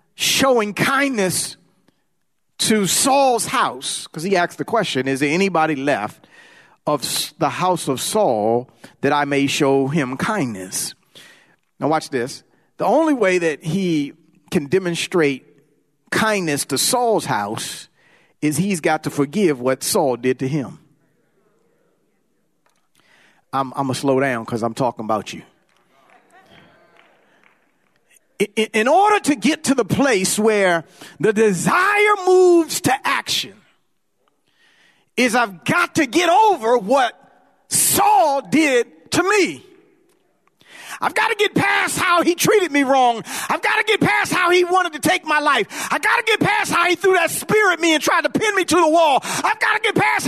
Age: 40-59